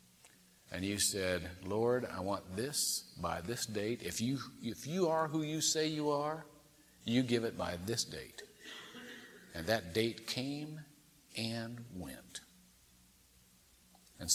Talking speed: 140 wpm